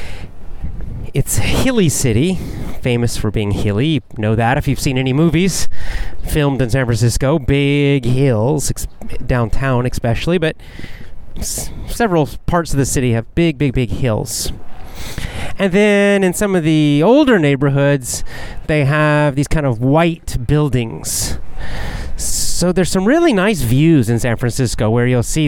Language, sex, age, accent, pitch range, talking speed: English, male, 30-49, American, 110-155 Hz, 145 wpm